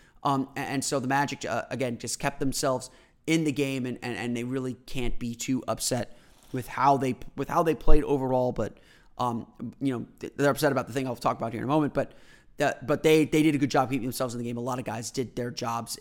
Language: English